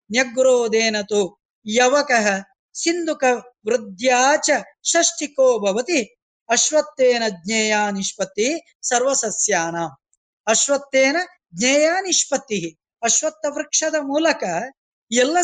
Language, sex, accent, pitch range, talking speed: Kannada, female, native, 210-280 Hz, 70 wpm